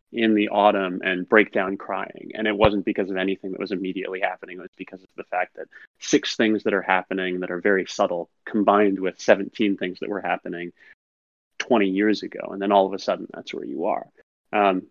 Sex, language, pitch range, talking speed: male, English, 95-110 Hz, 215 wpm